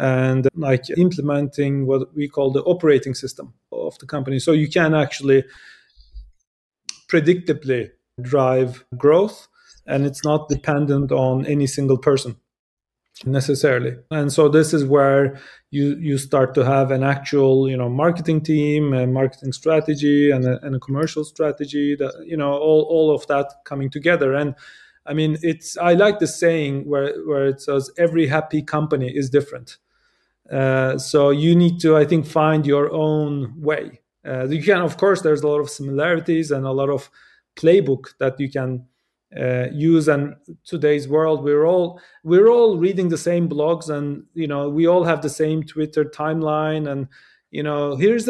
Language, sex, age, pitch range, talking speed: English, male, 30-49, 140-160 Hz, 170 wpm